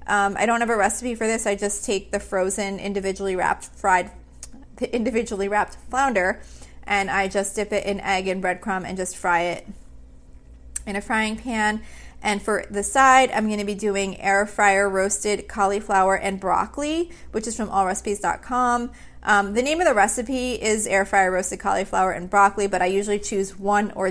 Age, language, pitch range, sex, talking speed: 30-49, English, 180-210 Hz, female, 185 wpm